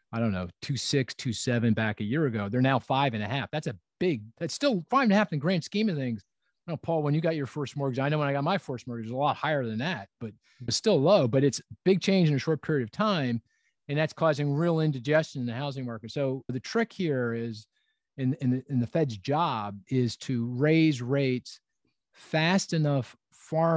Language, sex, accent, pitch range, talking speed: English, male, American, 115-145 Hz, 245 wpm